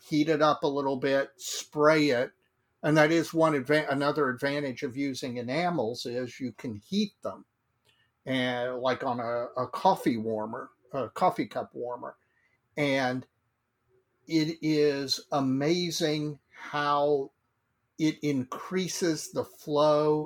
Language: English